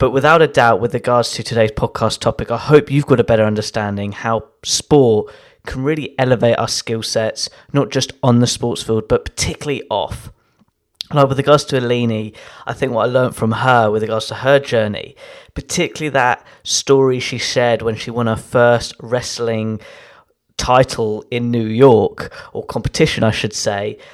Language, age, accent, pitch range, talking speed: English, 20-39, British, 115-130 Hz, 175 wpm